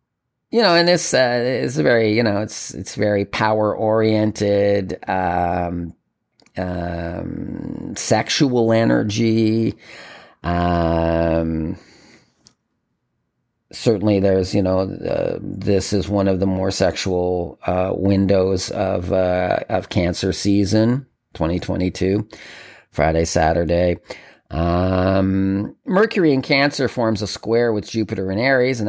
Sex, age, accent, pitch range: male, 40-59, American, 95-115 Hz